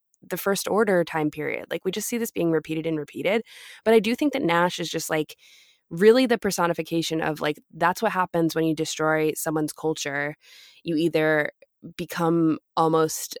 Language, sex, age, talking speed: English, female, 20-39, 180 wpm